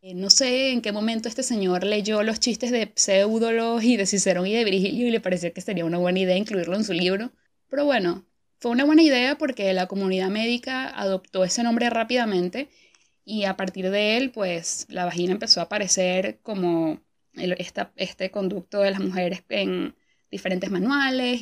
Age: 20-39